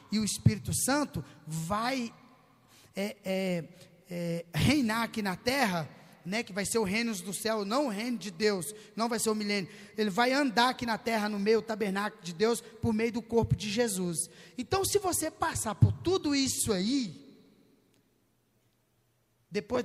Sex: male